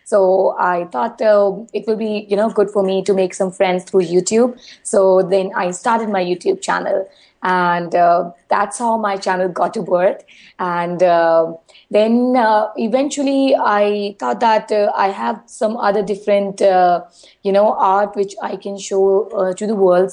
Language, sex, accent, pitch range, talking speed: English, female, Indian, 185-220 Hz, 180 wpm